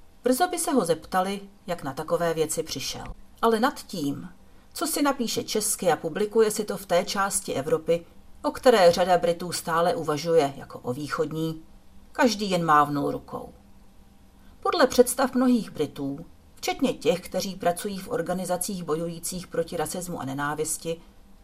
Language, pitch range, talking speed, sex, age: Czech, 160-245 Hz, 150 wpm, female, 40-59